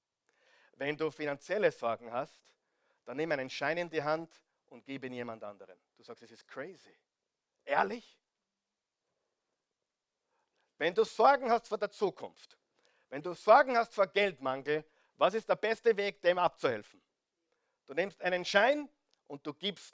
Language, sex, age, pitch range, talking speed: German, male, 50-69, 155-235 Hz, 150 wpm